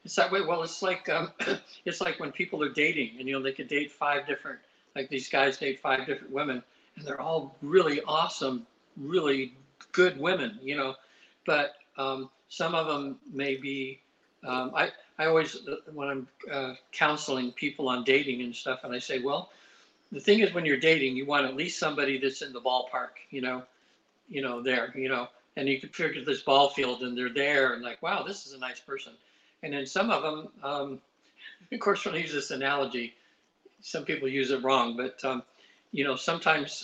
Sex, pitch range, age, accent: male, 130-150 Hz, 60-79, American